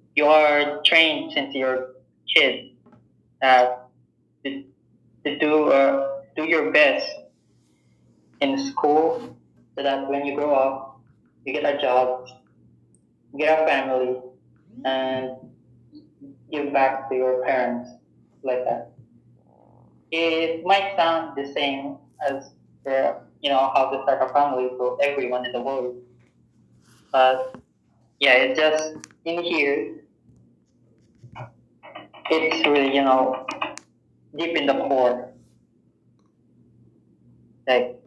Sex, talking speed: male, 115 wpm